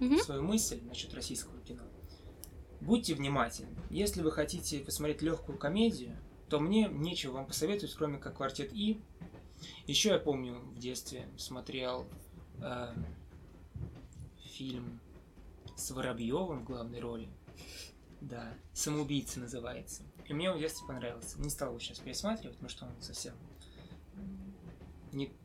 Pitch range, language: 115-160 Hz, Russian